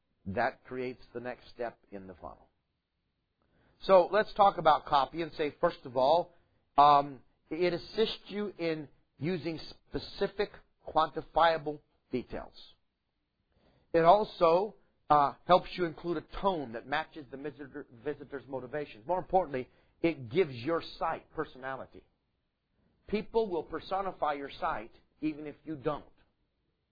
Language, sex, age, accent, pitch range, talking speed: English, male, 50-69, American, 130-170 Hz, 125 wpm